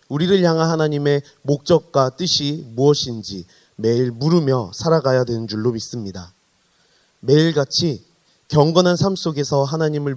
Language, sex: Korean, male